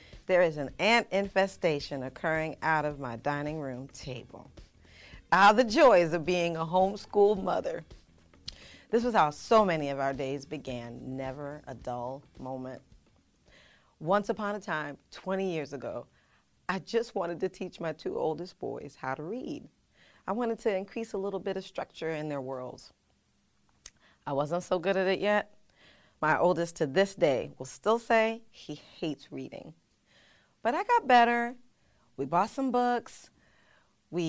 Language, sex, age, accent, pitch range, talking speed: English, female, 30-49, American, 140-205 Hz, 160 wpm